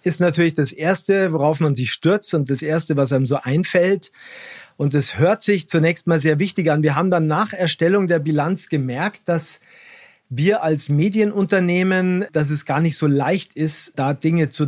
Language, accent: German, German